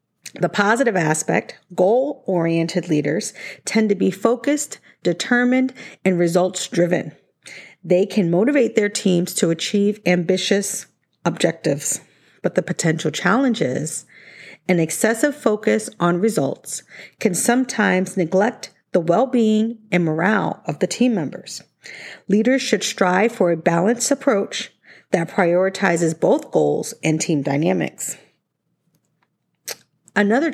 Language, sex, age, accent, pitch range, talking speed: English, female, 40-59, American, 170-225 Hz, 110 wpm